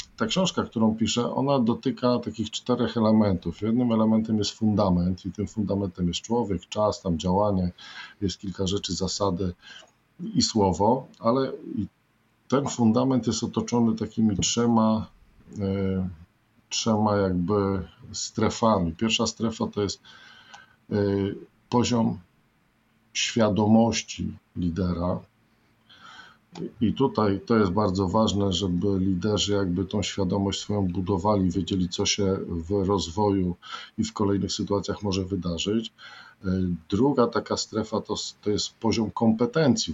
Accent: native